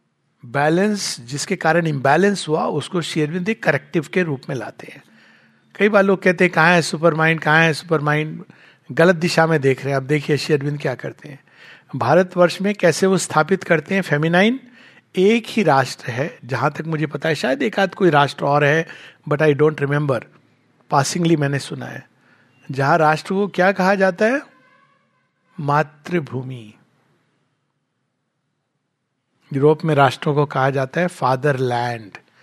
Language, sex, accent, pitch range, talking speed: Hindi, male, native, 145-205 Hz, 160 wpm